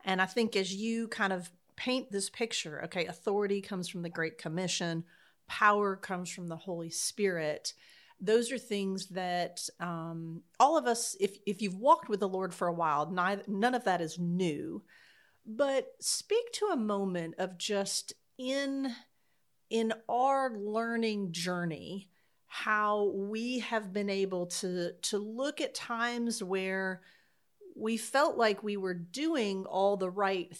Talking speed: 155 wpm